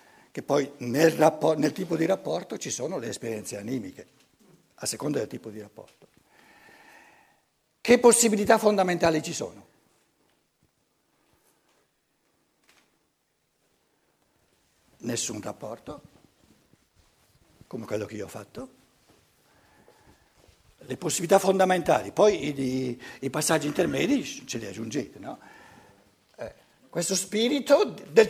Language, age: Italian, 60-79